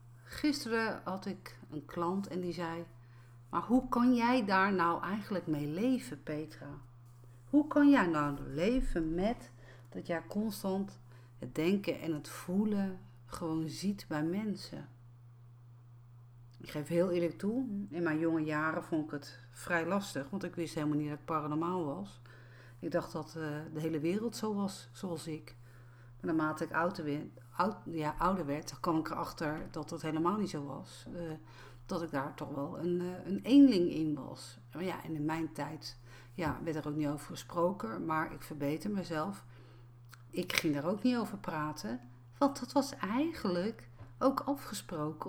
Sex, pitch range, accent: female, 125-185 Hz, Dutch